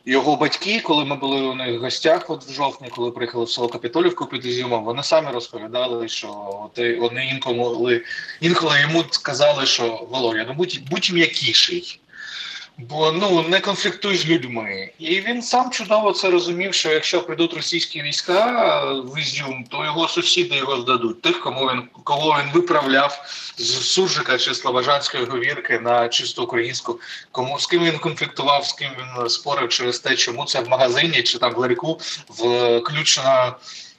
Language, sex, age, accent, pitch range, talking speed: Ukrainian, male, 20-39, native, 125-180 Hz, 165 wpm